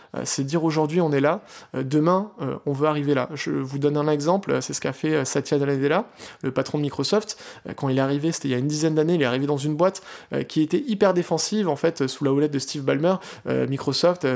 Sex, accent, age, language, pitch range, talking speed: male, French, 20-39, French, 145-180 Hz, 240 wpm